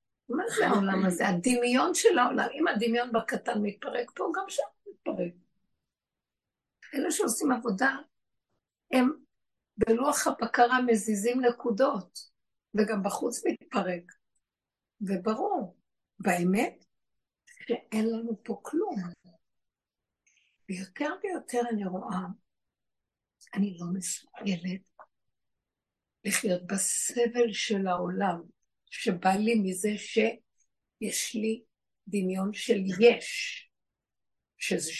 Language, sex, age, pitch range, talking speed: Hebrew, female, 60-79, 190-245 Hz, 90 wpm